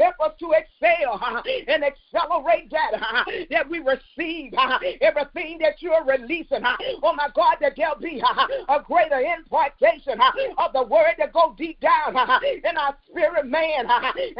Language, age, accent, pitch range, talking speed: English, 40-59, American, 310-370 Hz, 175 wpm